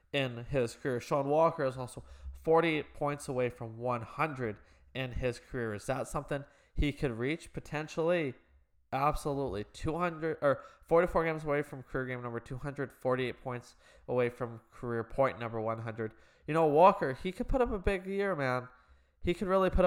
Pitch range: 115-155 Hz